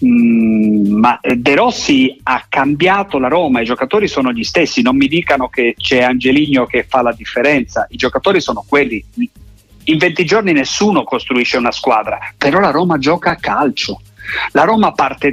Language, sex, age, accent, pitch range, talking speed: Italian, male, 50-69, native, 130-195 Hz, 170 wpm